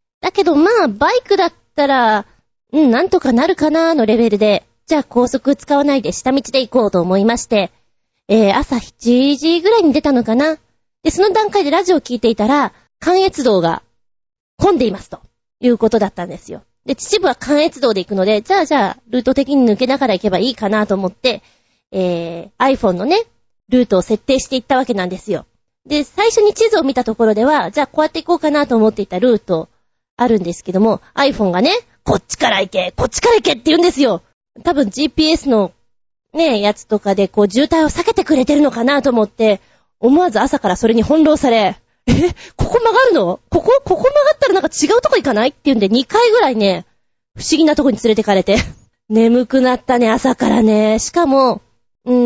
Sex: female